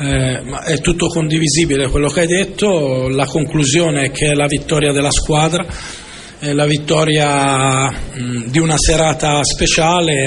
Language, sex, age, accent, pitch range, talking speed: Italian, male, 40-59, native, 140-165 Hz, 150 wpm